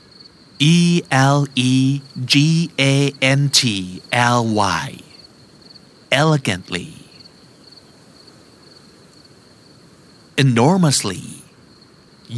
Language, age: Thai, 50-69